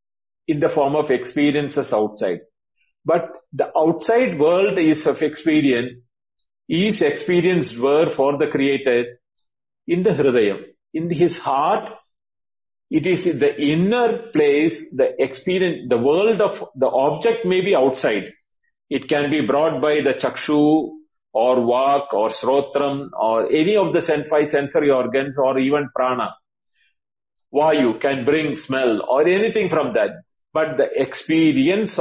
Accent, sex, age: Indian, male, 50-69